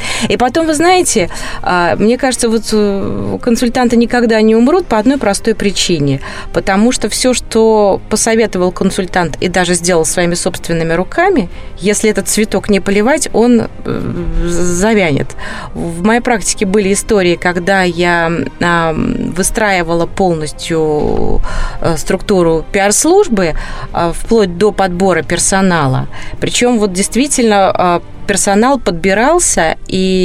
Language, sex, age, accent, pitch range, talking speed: Russian, female, 30-49, native, 170-220 Hz, 110 wpm